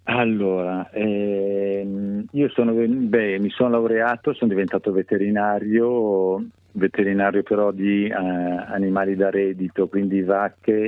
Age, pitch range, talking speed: 40-59, 90-100 Hz, 110 wpm